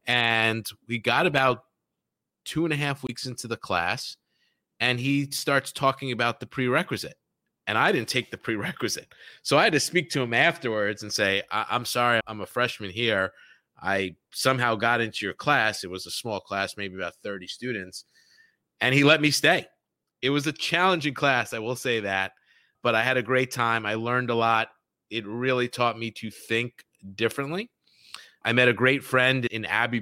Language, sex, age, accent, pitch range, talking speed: English, male, 30-49, American, 105-125 Hz, 190 wpm